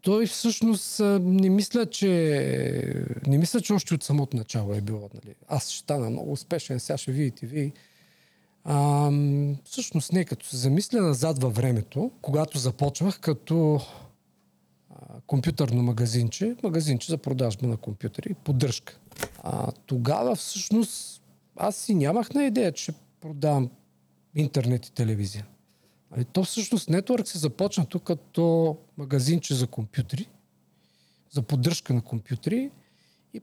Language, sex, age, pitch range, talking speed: Bulgarian, male, 40-59, 120-180 Hz, 130 wpm